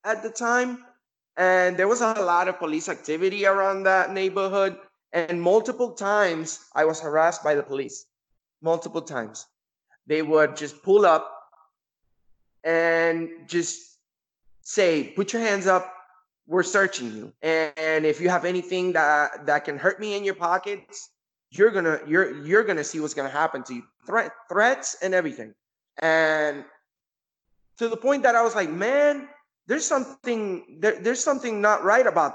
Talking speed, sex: 160 wpm, male